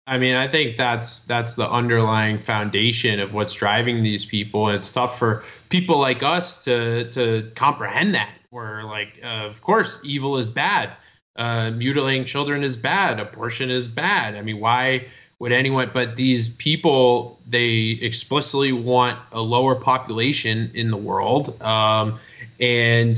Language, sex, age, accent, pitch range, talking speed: English, male, 20-39, American, 115-135 Hz, 155 wpm